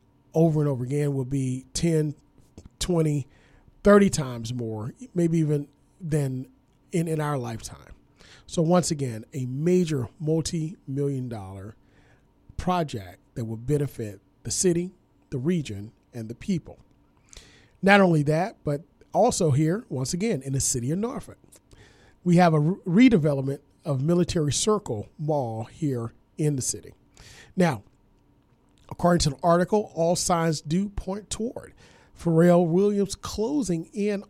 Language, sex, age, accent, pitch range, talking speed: English, male, 40-59, American, 135-180 Hz, 130 wpm